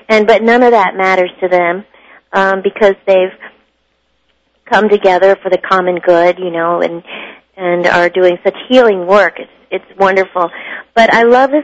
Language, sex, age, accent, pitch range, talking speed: English, female, 40-59, American, 180-210 Hz, 170 wpm